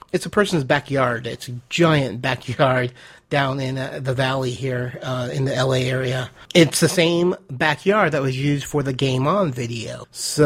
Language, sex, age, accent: English, male, 30-49, American